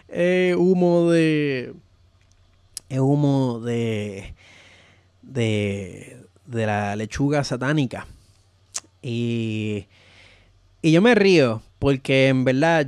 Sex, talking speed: male, 95 wpm